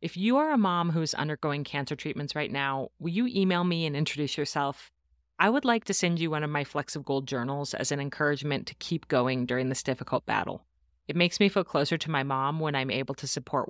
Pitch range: 135-170 Hz